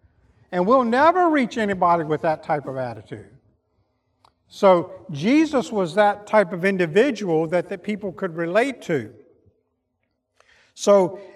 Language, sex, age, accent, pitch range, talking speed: English, male, 50-69, American, 175-210 Hz, 125 wpm